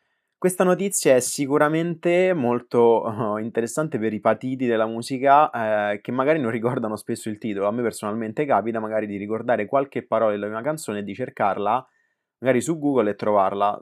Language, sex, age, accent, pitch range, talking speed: Italian, male, 20-39, native, 105-145 Hz, 170 wpm